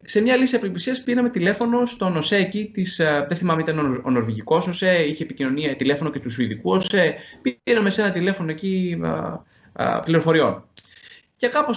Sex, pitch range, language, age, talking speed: male, 135-190 Hz, Greek, 20-39, 160 wpm